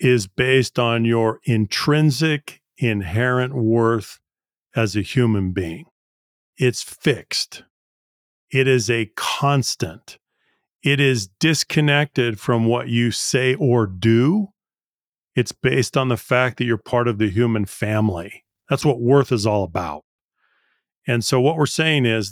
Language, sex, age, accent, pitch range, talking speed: English, male, 40-59, American, 110-130 Hz, 135 wpm